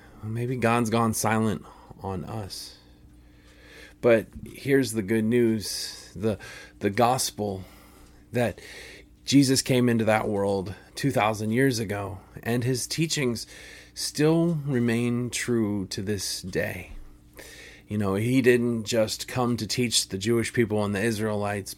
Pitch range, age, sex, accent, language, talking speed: 100-130 Hz, 30-49, male, American, English, 125 wpm